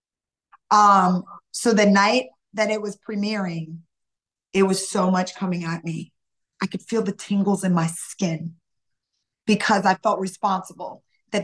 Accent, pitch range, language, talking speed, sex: American, 200-250 Hz, English, 145 wpm, female